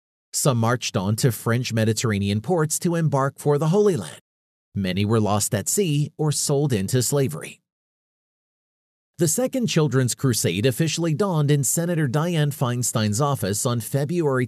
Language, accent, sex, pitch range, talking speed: English, American, male, 115-160 Hz, 145 wpm